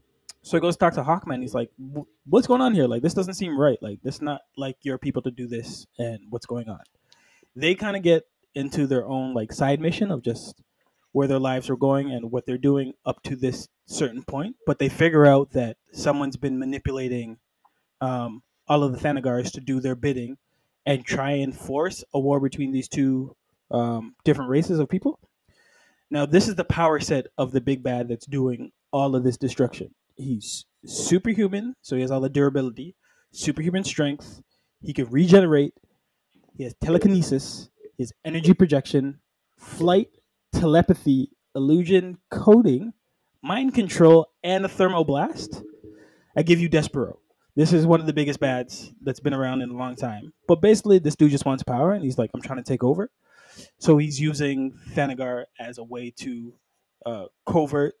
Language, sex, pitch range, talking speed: English, male, 130-165 Hz, 185 wpm